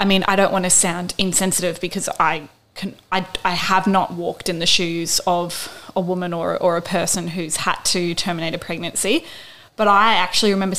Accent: Australian